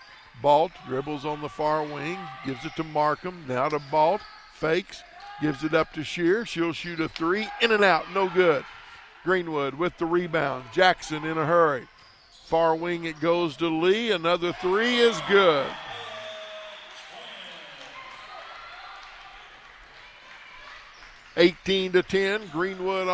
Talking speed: 125 wpm